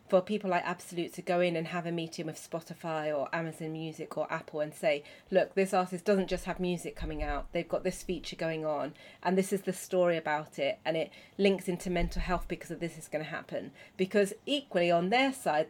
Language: English